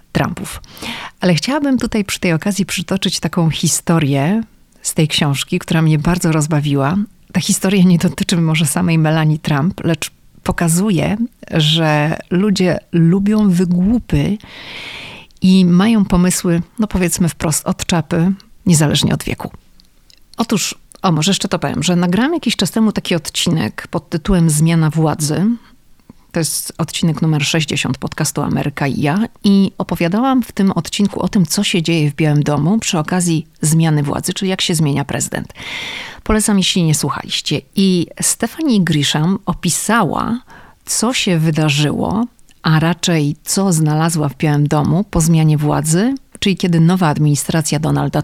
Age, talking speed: 40-59, 145 wpm